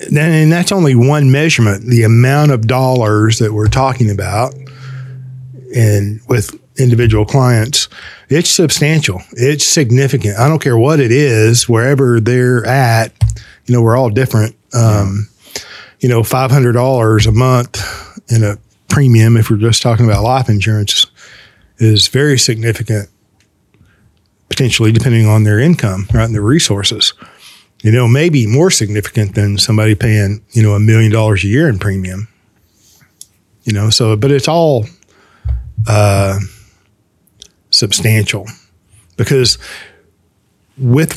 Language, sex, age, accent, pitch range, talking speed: English, male, 40-59, American, 105-130 Hz, 130 wpm